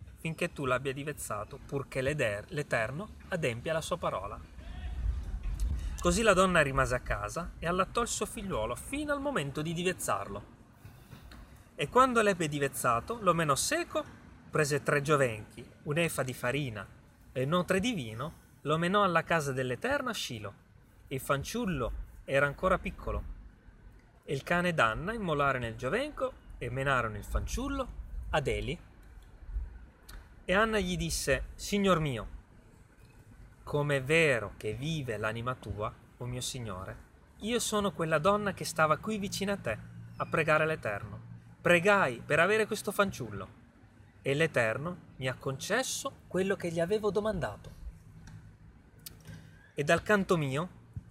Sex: male